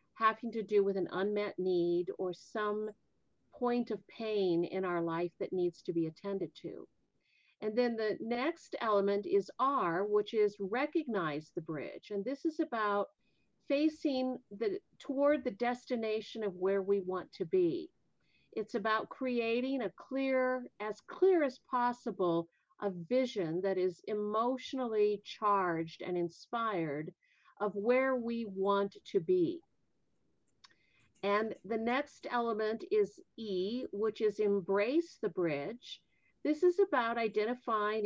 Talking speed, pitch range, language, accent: 135 wpm, 195-250 Hz, English, American